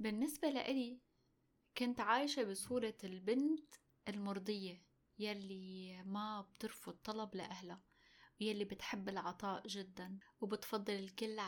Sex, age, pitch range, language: female, 10-29, 195-240 Hz, Arabic